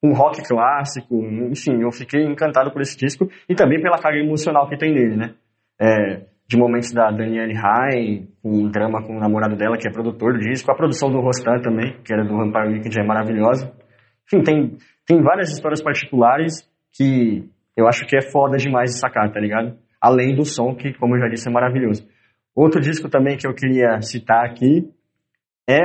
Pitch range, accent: 115-150 Hz, Brazilian